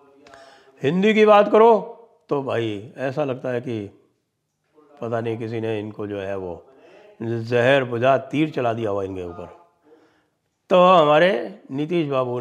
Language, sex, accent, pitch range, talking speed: English, male, Indian, 120-150 Hz, 145 wpm